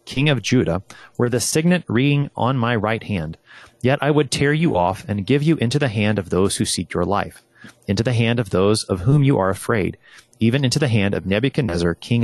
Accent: American